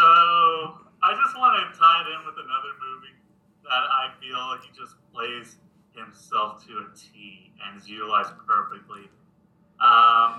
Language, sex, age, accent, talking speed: English, male, 30-49, American, 150 wpm